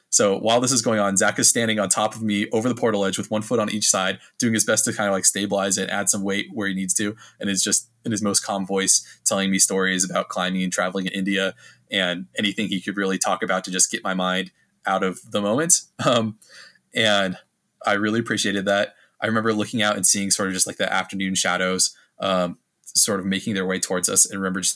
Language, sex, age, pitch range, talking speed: English, male, 20-39, 95-110 Hz, 245 wpm